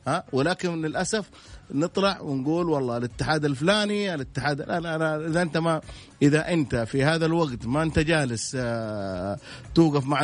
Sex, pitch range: male, 120-155 Hz